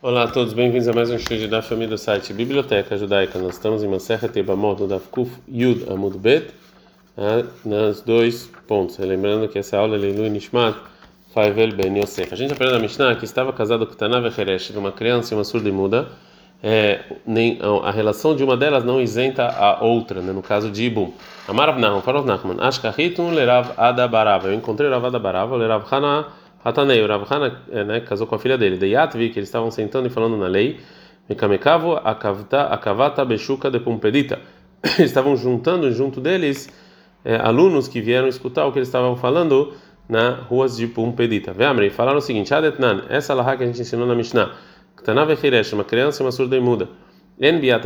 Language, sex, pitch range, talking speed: Portuguese, male, 105-125 Hz, 190 wpm